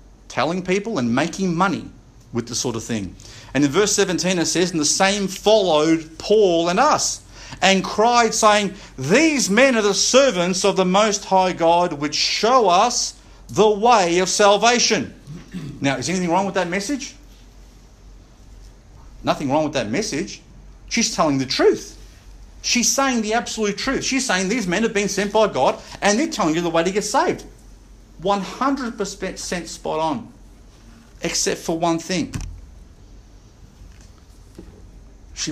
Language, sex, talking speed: English, male, 150 wpm